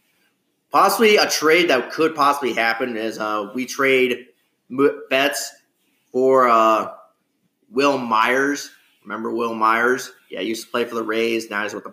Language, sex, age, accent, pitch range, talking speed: English, male, 30-49, American, 110-140 Hz, 155 wpm